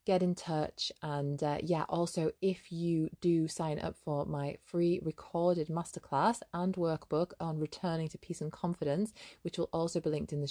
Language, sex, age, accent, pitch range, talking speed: English, female, 20-39, British, 150-175 Hz, 185 wpm